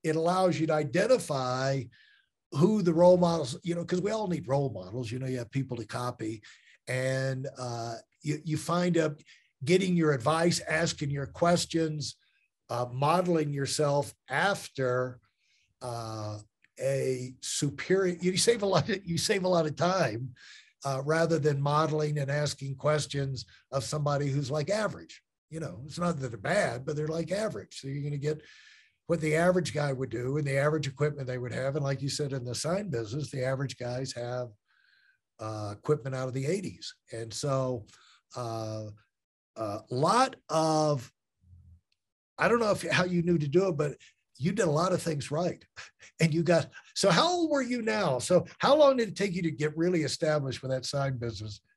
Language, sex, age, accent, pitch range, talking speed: English, male, 50-69, American, 130-170 Hz, 185 wpm